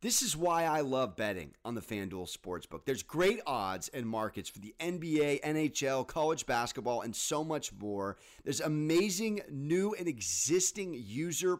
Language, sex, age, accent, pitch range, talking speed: English, male, 30-49, American, 140-190 Hz, 160 wpm